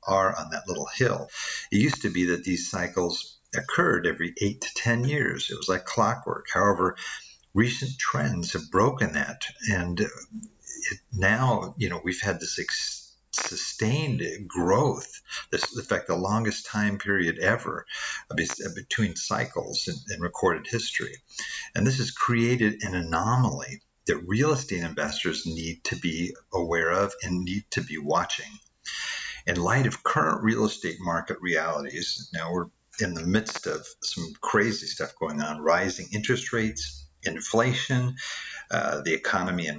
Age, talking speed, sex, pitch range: 50-69, 150 wpm, male, 95-120 Hz